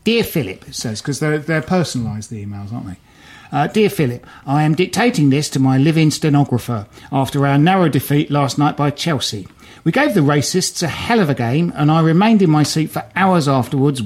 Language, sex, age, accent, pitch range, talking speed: English, male, 50-69, British, 130-170 Hz, 210 wpm